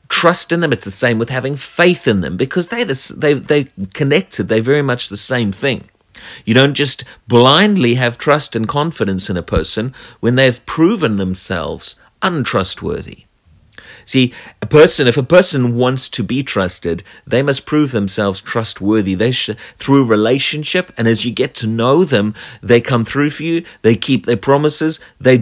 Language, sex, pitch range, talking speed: English, male, 110-145 Hz, 175 wpm